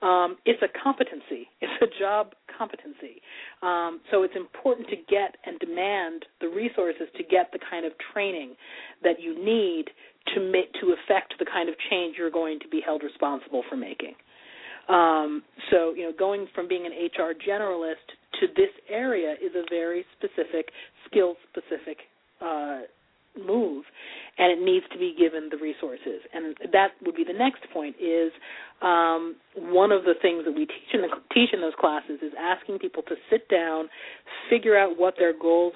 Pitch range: 160-235 Hz